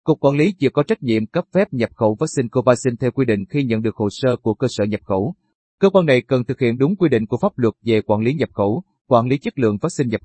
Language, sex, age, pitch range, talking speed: Vietnamese, male, 30-49, 110-145 Hz, 285 wpm